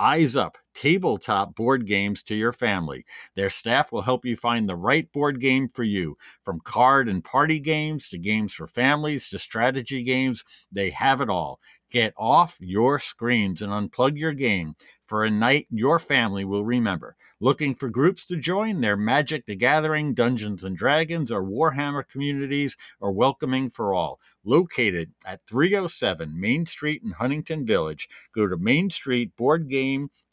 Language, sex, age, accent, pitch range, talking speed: English, male, 50-69, American, 105-135 Hz, 165 wpm